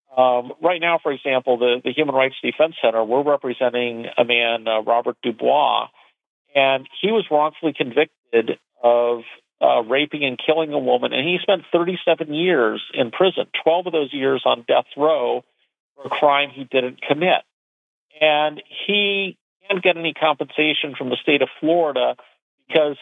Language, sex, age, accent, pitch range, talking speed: English, male, 50-69, American, 125-155 Hz, 165 wpm